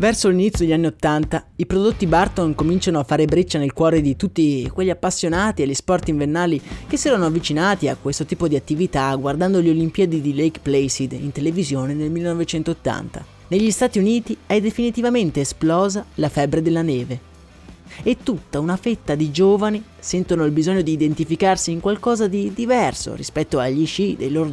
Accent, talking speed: native, 170 wpm